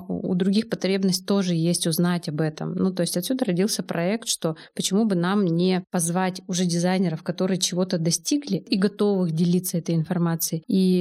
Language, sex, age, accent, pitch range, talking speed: Russian, female, 20-39, native, 175-200 Hz, 170 wpm